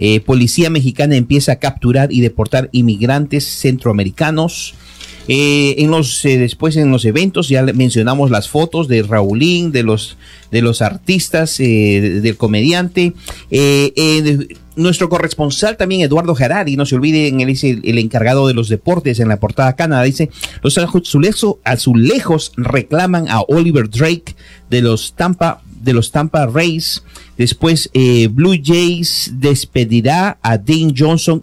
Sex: male